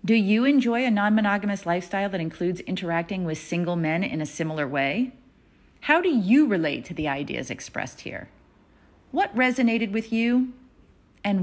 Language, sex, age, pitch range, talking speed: English, female, 30-49, 175-255 Hz, 165 wpm